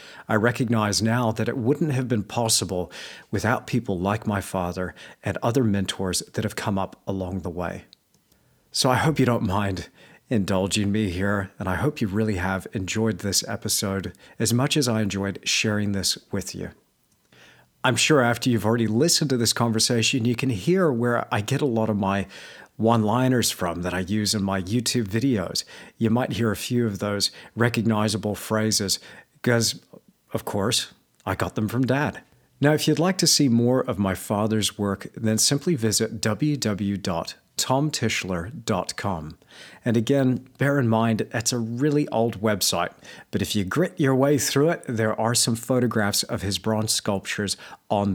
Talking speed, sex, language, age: 170 wpm, male, English, 40-59